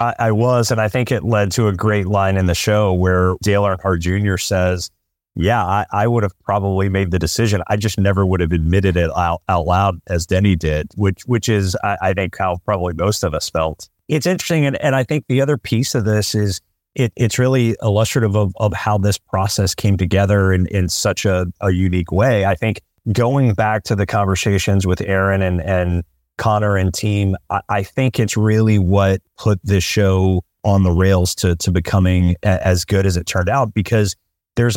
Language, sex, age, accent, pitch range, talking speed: English, male, 30-49, American, 95-110 Hz, 205 wpm